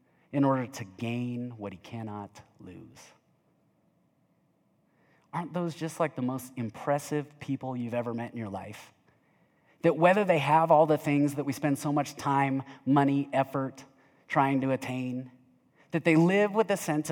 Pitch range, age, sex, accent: 130-170 Hz, 30-49, male, American